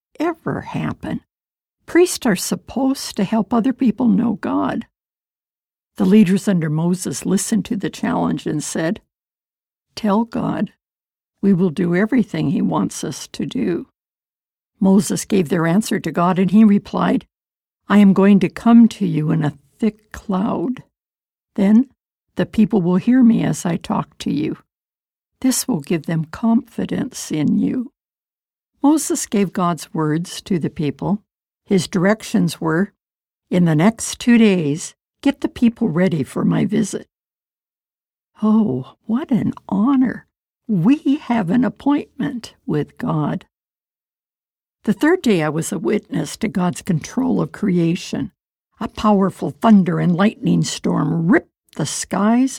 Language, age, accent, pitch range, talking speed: English, 60-79, American, 180-235 Hz, 140 wpm